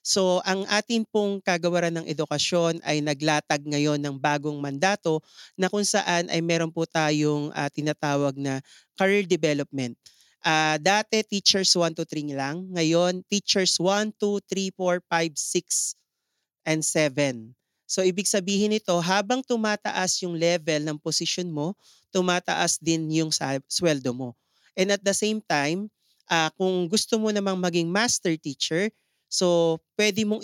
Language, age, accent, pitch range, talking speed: Filipino, 40-59, native, 155-200 Hz, 145 wpm